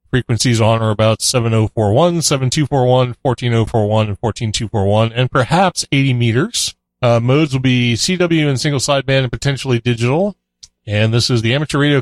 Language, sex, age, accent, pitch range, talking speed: English, male, 30-49, American, 110-145 Hz, 150 wpm